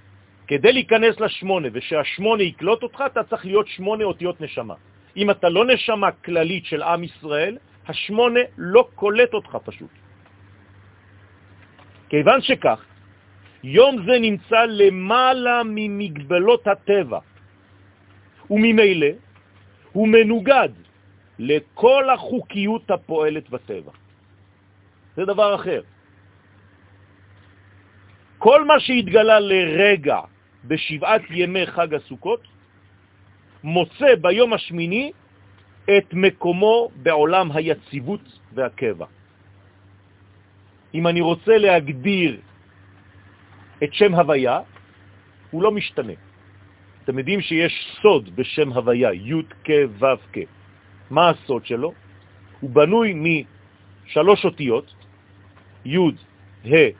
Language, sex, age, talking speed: French, male, 40-59, 80 wpm